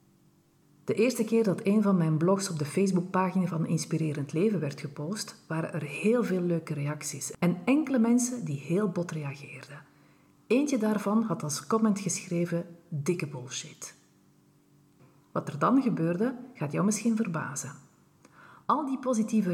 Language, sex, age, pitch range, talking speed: Dutch, female, 40-59, 155-215 Hz, 145 wpm